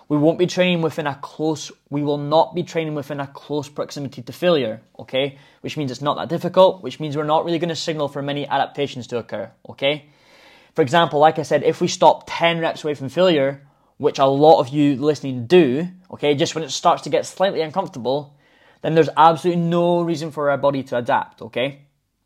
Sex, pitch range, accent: male, 135-160 Hz, British